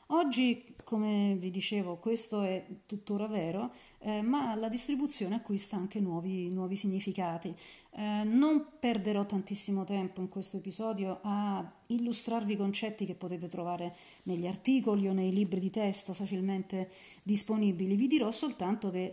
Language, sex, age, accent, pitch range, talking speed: Italian, female, 40-59, native, 185-220 Hz, 140 wpm